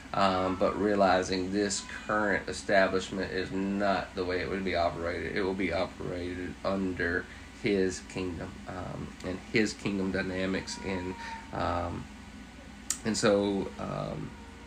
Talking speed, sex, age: 125 wpm, male, 30-49